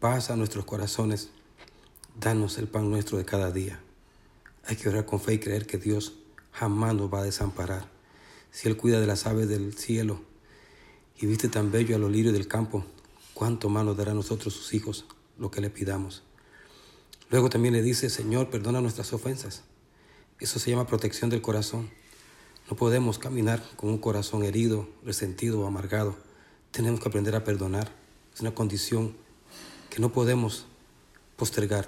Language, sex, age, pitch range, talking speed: Spanish, male, 40-59, 100-115 Hz, 170 wpm